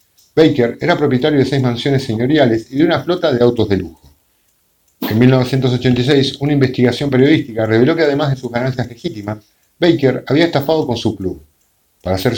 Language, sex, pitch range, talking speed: English, male, 105-140 Hz, 170 wpm